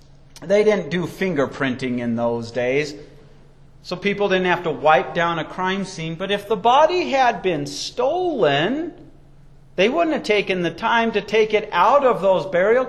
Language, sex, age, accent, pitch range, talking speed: English, male, 40-59, American, 185-295 Hz, 170 wpm